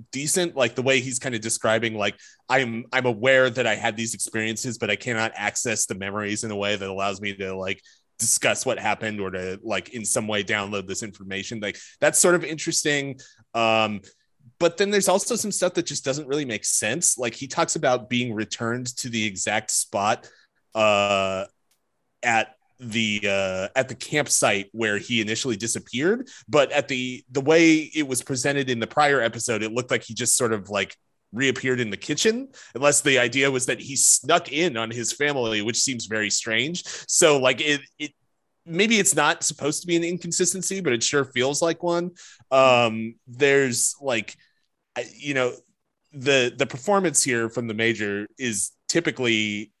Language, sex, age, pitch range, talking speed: English, male, 30-49, 110-145 Hz, 185 wpm